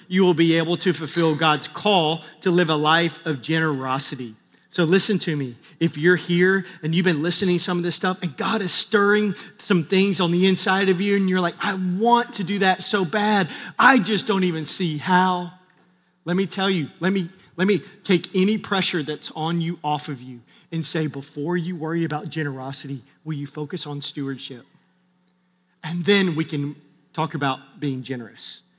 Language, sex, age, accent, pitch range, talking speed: English, male, 40-59, American, 150-185 Hz, 195 wpm